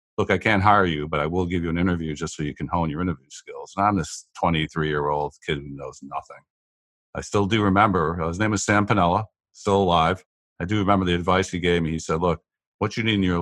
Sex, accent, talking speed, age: male, American, 250 wpm, 50-69